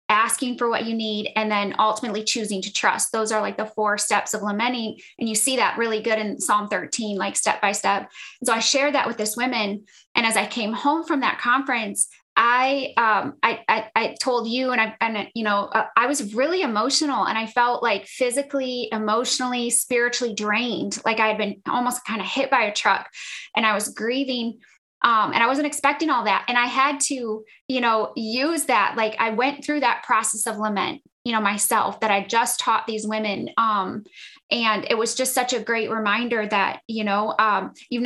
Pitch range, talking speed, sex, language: 210-250 Hz, 210 wpm, female, English